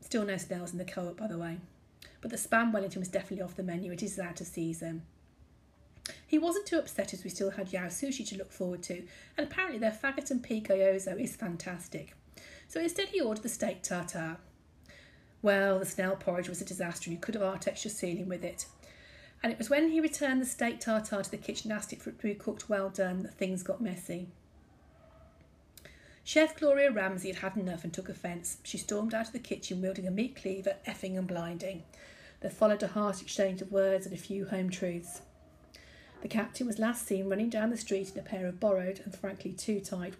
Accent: British